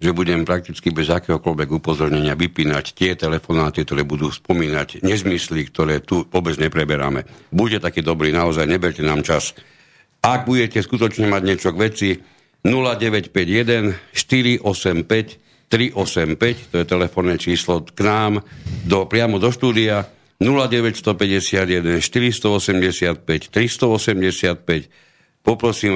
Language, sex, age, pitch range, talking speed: Slovak, male, 60-79, 90-110 Hz, 110 wpm